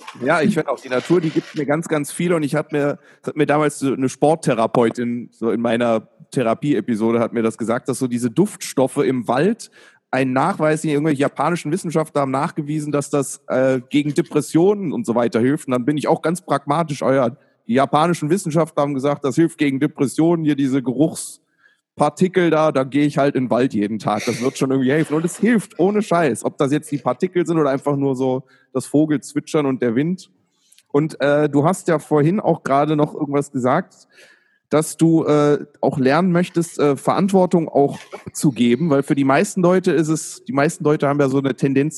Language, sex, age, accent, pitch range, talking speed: Danish, male, 30-49, German, 130-160 Hz, 210 wpm